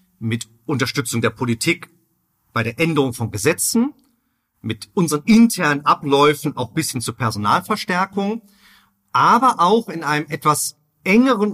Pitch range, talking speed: 135-190 Hz, 125 wpm